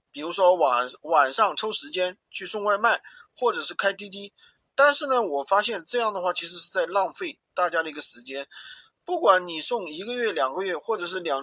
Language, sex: Chinese, male